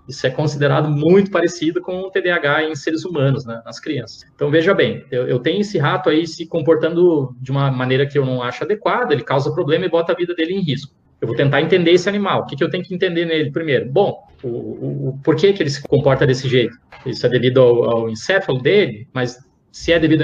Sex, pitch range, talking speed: male, 140-180 Hz, 235 wpm